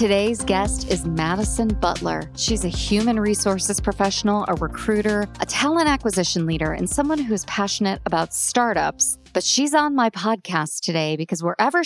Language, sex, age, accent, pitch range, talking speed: English, female, 40-59, American, 175-230 Hz, 150 wpm